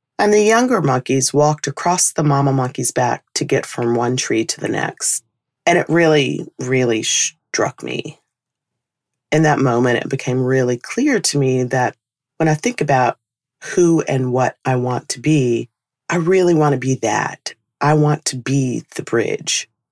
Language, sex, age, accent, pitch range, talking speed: English, female, 40-59, American, 120-155 Hz, 170 wpm